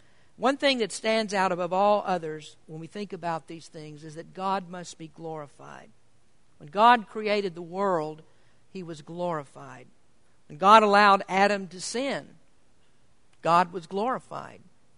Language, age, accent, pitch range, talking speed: English, 50-69, American, 175-220 Hz, 150 wpm